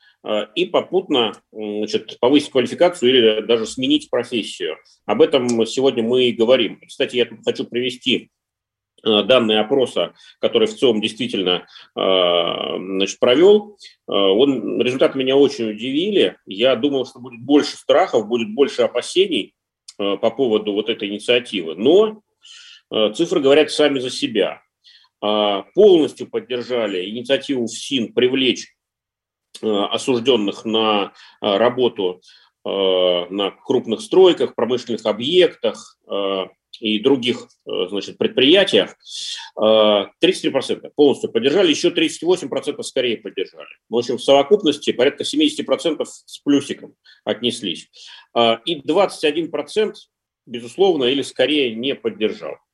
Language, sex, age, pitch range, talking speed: Russian, male, 30-49, 110-175 Hz, 100 wpm